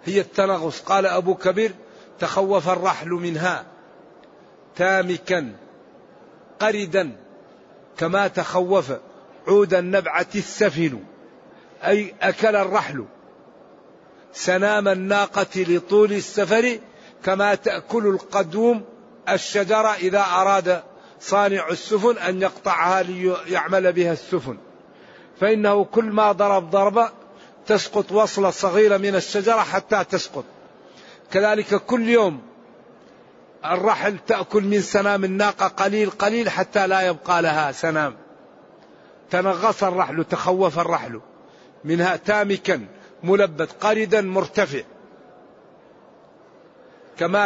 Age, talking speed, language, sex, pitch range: 50-69, 90 wpm, Arabic, male, 180-205 Hz